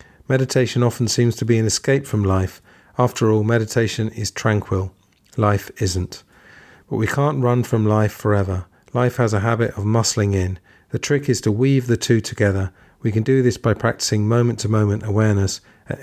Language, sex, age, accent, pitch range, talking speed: English, male, 40-59, British, 105-120 Hz, 175 wpm